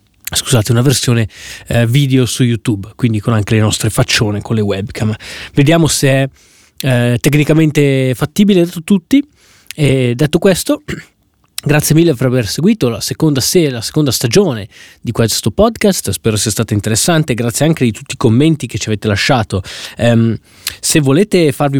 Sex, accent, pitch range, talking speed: male, native, 110-145 Hz, 160 wpm